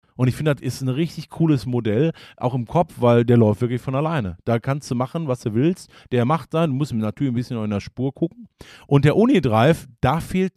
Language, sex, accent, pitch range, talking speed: German, male, German, 115-150 Hz, 240 wpm